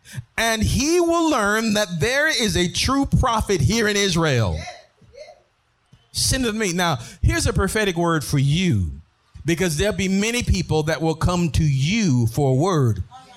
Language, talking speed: English, 160 wpm